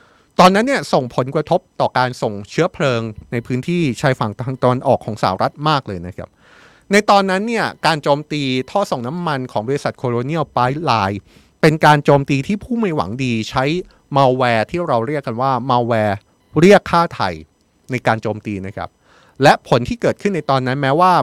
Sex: male